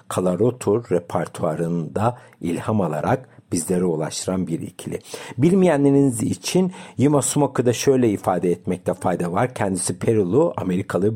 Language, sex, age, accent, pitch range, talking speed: Turkish, male, 60-79, native, 90-130 Hz, 110 wpm